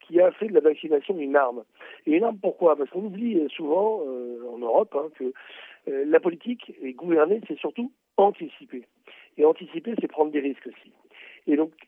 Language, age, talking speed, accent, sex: Italian, 60-79, 190 wpm, French, male